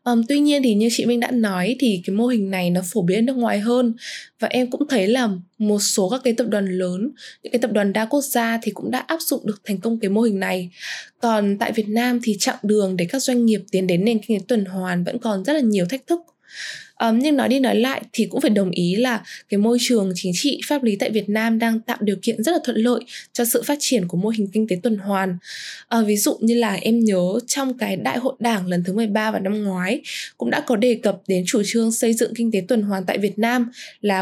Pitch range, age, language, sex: 195-245 Hz, 10-29, Vietnamese, female